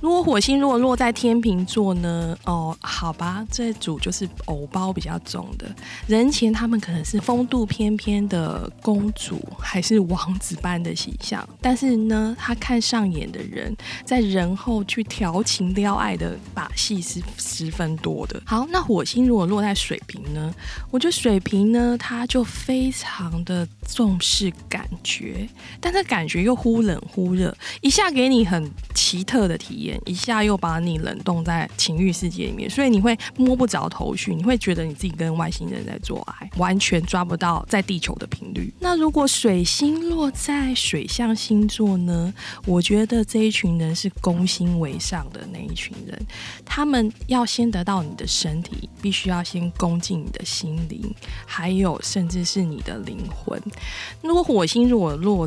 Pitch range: 175-235 Hz